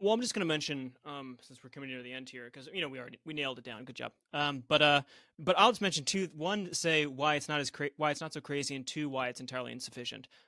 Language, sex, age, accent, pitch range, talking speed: English, male, 30-49, American, 140-185 Hz, 290 wpm